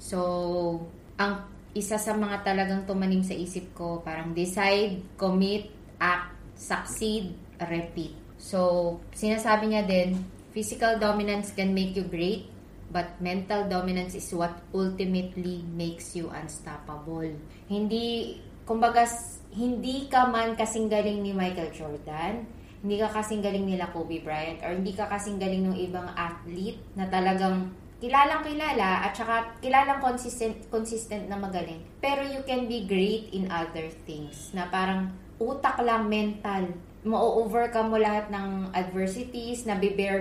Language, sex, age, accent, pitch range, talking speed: Filipino, female, 20-39, native, 180-220 Hz, 135 wpm